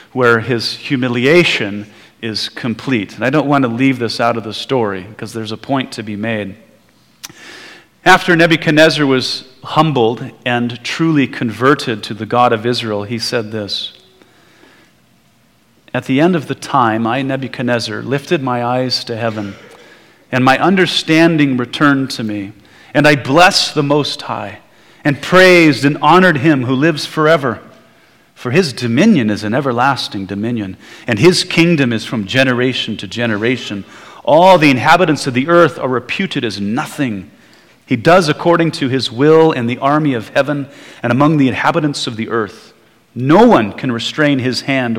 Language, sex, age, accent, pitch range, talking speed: English, male, 40-59, American, 115-150 Hz, 160 wpm